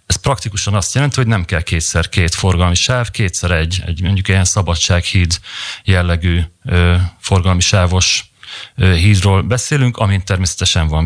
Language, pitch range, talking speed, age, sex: Hungarian, 90-110 Hz, 135 wpm, 40-59, male